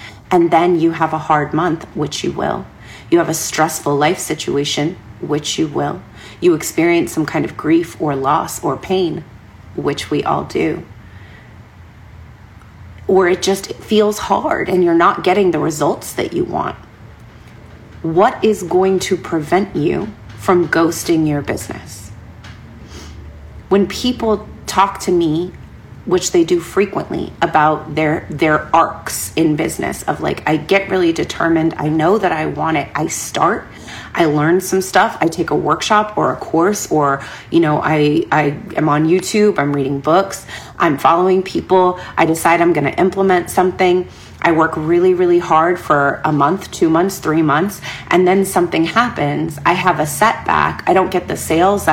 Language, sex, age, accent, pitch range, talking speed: English, female, 30-49, American, 150-185 Hz, 165 wpm